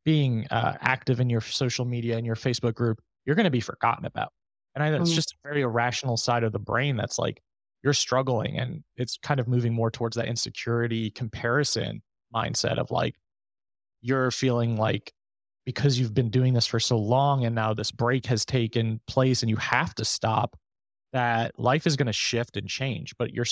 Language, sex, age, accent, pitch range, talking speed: English, male, 20-39, American, 115-130 Hz, 195 wpm